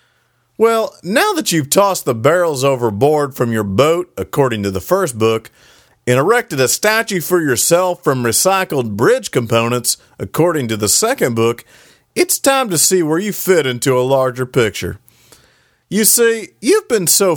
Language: English